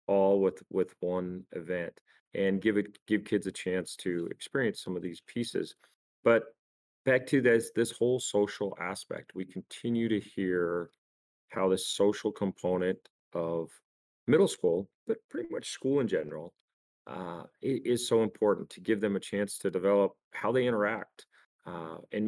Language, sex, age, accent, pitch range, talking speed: English, male, 40-59, American, 90-125 Hz, 160 wpm